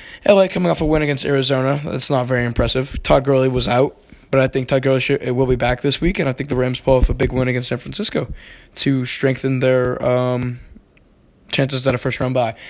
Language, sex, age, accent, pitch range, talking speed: English, male, 20-39, American, 125-145 Hz, 235 wpm